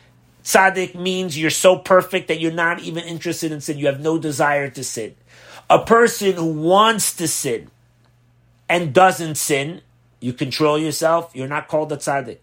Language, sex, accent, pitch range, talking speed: English, male, American, 120-180 Hz, 170 wpm